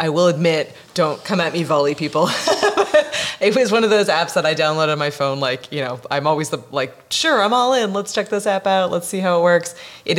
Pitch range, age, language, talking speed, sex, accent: 135-170 Hz, 30-49, English, 255 wpm, female, American